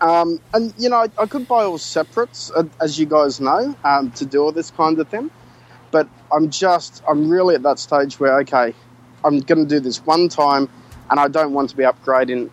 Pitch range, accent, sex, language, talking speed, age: 130-160 Hz, Australian, male, English, 225 wpm, 20-39